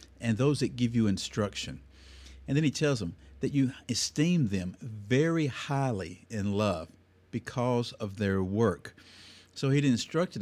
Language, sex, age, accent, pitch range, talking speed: English, male, 50-69, American, 95-135 Hz, 150 wpm